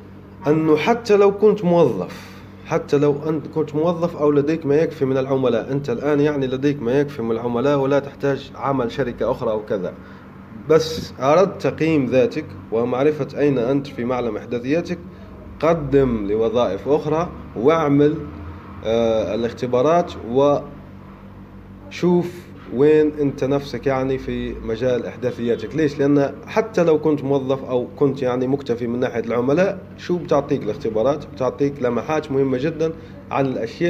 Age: 30-49